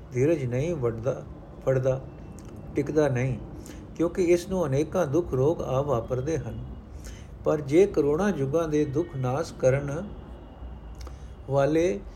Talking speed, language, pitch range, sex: 120 wpm, Punjabi, 120-165 Hz, male